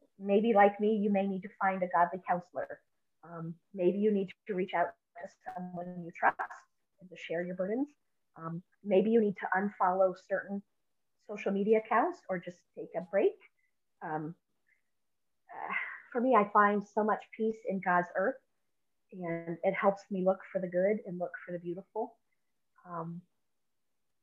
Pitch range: 175-210 Hz